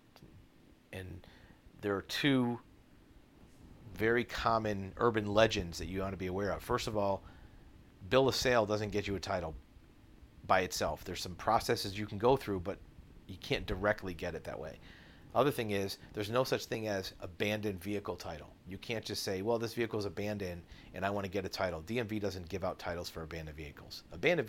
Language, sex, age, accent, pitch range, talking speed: English, male, 40-59, American, 90-110 Hz, 195 wpm